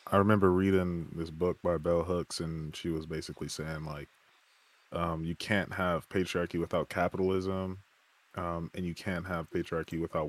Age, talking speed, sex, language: 20-39, 165 wpm, male, English